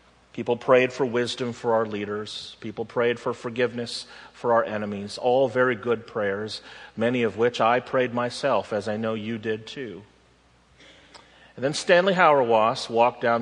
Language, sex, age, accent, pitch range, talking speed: English, male, 40-59, American, 95-130 Hz, 160 wpm